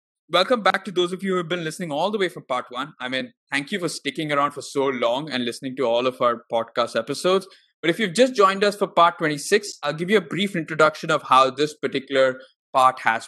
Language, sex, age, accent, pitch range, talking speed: English, male, 20-39, Indian, 130-175 Hz, 250 wpm